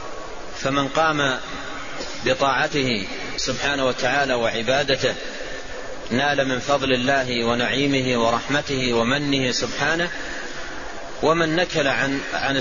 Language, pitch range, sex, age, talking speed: Arabic, 125-145 Hz, male, 30-49, 85 wpm